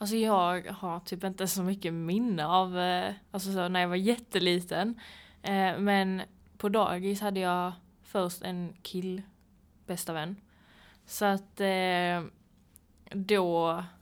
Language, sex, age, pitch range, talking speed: Swedish, female, 20-39, 170-195 Hz, 130 wpm